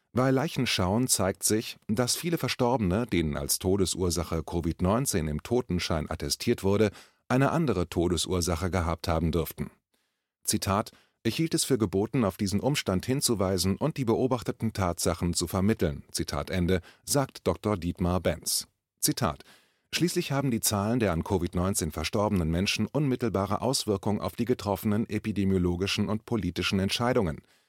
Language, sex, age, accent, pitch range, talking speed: German, male, 30-49, German, 90-120 Hz, 135 wpm